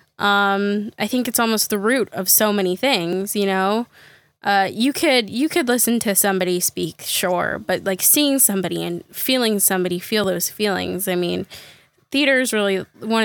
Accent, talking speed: American, 175 wpm